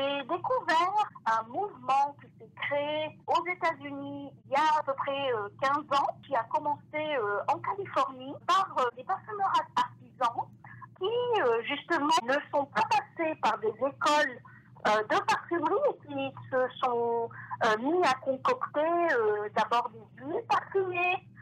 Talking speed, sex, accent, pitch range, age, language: 130 wpm, female, French, 210-310 Hz, 50-69, French